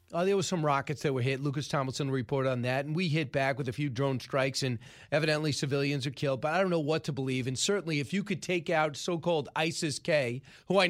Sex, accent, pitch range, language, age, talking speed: male, American, 135-185 Hz, English, 40-59, 240 wpm